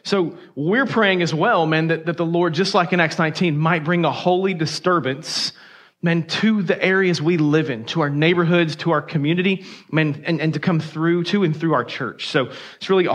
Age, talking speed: 30-49, 215 wpm